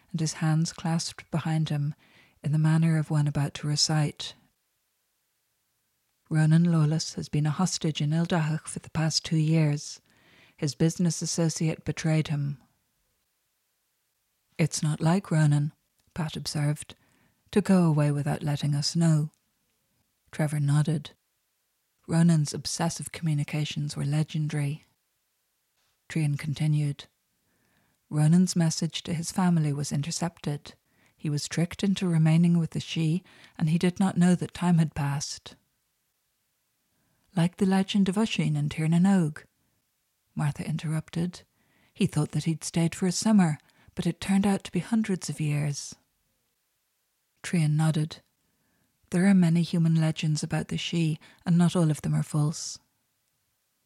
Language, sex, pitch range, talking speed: English, female, 150-170 Hz, 135 wpm